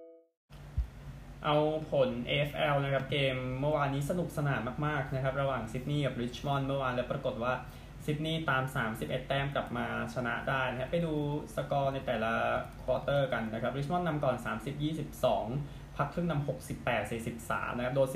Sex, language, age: male, Thai, 20-39